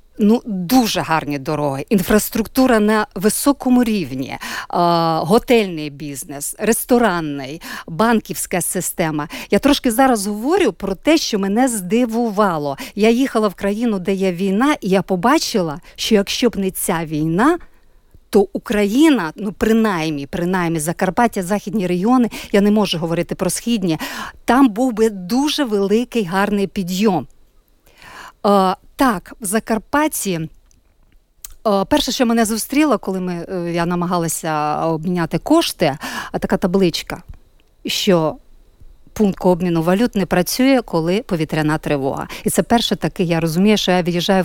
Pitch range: 165-225 Hz